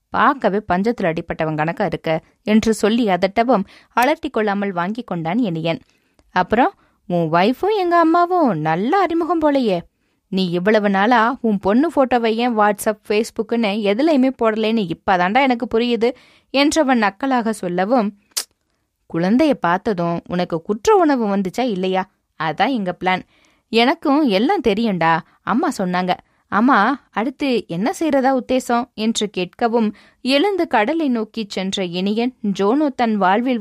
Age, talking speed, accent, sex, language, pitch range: 20-39, 120 wpm, native, female, Tamil, 185-255 Hz